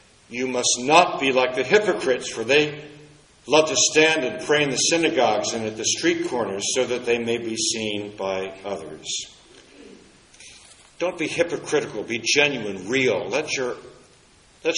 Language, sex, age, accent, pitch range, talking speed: English, male, 60-79, American, 105-155 Hz, 150 wpm